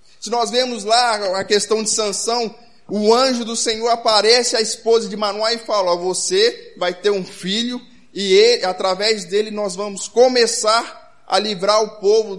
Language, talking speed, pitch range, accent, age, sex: Portuguese, 170 wpm, 205-245 Hz, Brazilian, 20-39, male